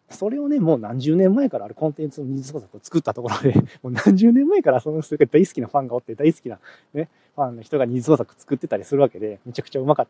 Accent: native